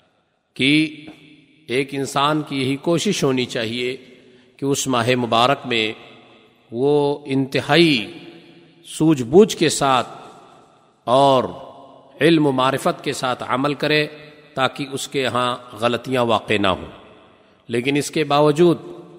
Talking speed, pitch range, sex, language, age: 120 wpm, 130-160 Hz, male, Urdu, 50-69